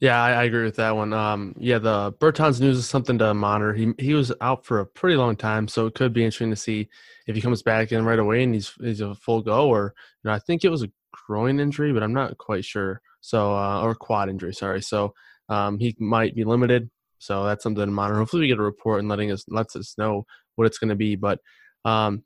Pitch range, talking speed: 110-125 Hz, 250 wpm